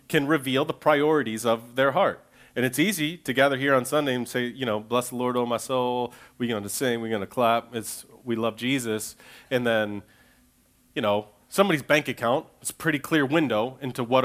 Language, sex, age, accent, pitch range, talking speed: English, male, 30-49, American, 120-150 Hz, 205 wpm